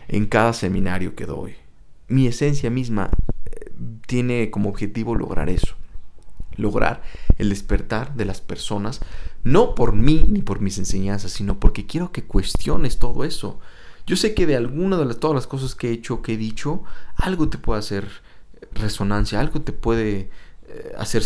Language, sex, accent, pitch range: English, male, Mexican, 100-145 Hz